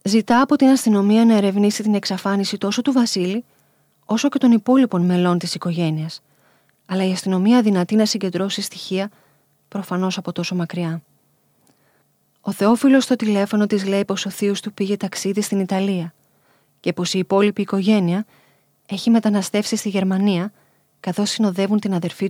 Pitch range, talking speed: 185-215 Hz, 150 wpm